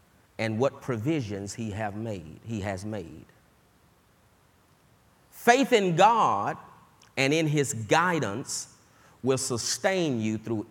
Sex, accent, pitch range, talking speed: male, American, 105-145 Hz, 110 wpm